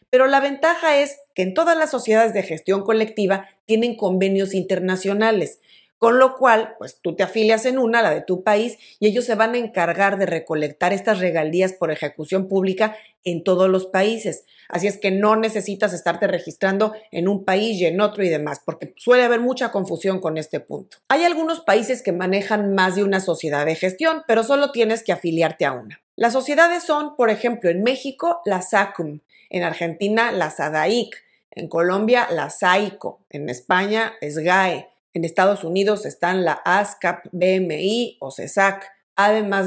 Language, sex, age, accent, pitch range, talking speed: Spanish, female, 40-59, Mexican, 185-225 Hz, 175 wpm